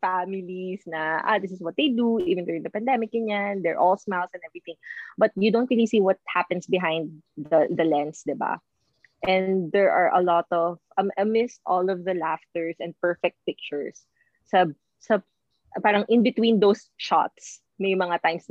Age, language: 20-39, English